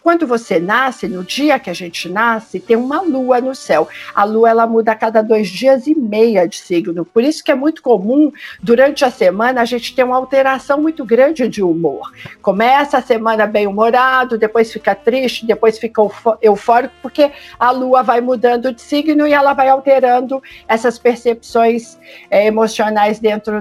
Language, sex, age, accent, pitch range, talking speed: Portuguese, female, 50-69, Brazilian, 215-260 Hz, 180 wpm